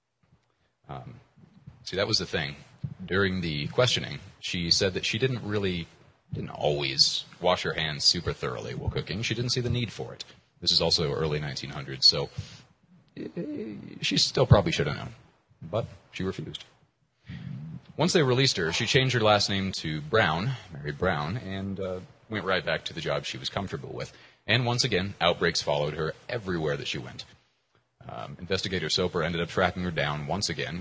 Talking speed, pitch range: 175 wpm, 80-115 Hz